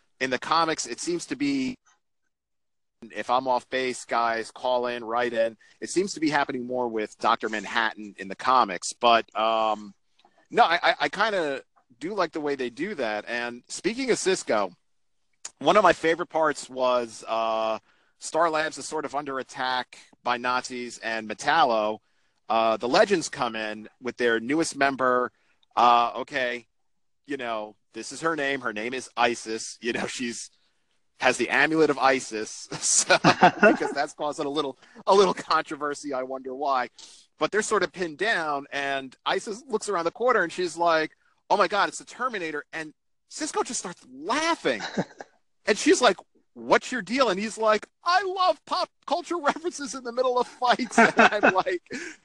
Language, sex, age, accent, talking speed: English, male, 40-59, American, 175 wpm